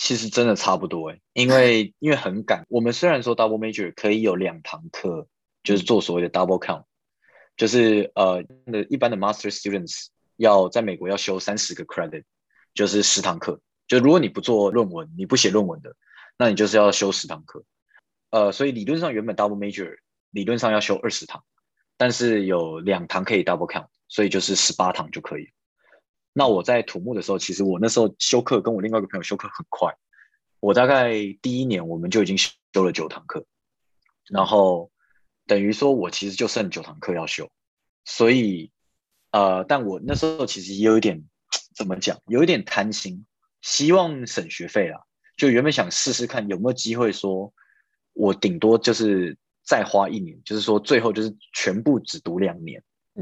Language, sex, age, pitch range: Chinese, male, 20-39, 100-120 Hz